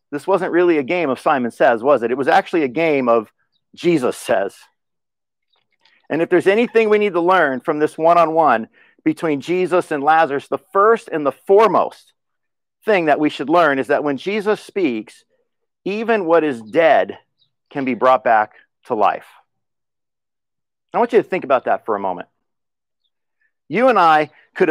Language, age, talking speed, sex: English, 50-69, 175 wpm, male